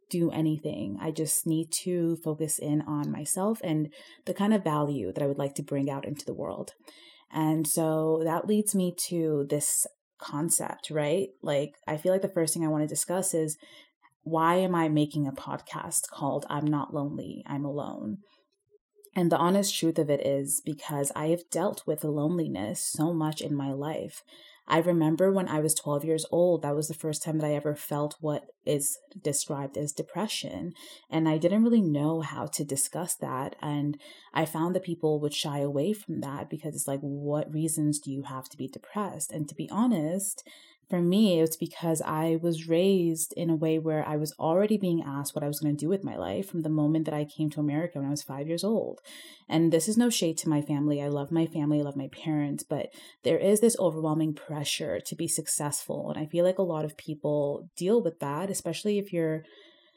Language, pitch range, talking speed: English, 150-175 Hz, 210 wpm